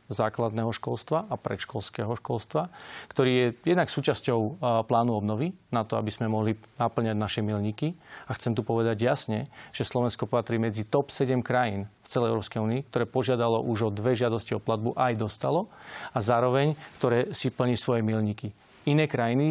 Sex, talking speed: male, 170 wpm